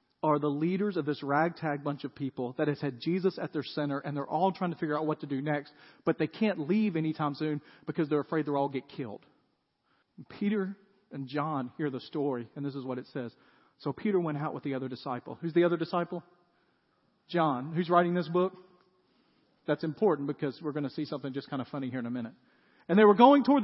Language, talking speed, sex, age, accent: English, 230 wpm, male, 40-59, American